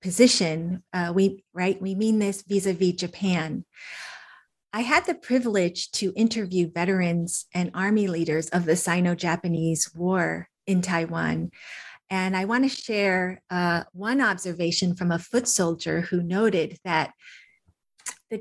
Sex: female